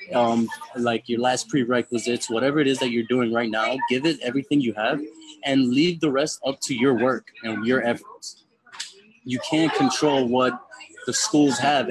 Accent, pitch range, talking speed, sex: American, 120-155 Hz, 180 wpm, male